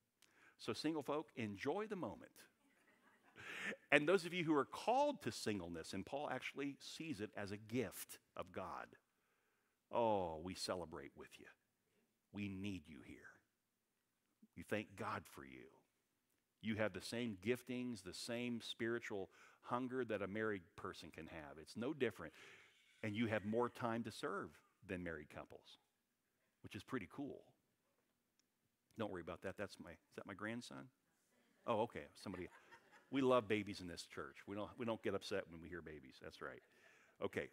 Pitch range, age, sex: 100-125 Hz, 50-69, male